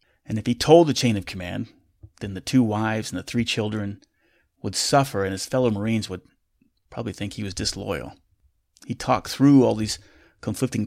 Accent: American